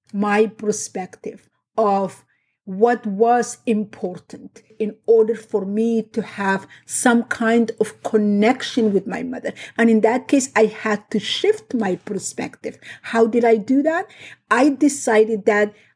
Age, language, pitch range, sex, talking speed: 50-69, English, 210-240 Hz, female, 140 wpm